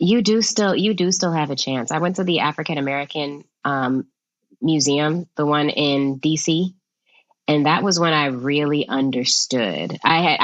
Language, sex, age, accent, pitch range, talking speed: English, female, 20-39, American, 140-175 Hz, 165 wpm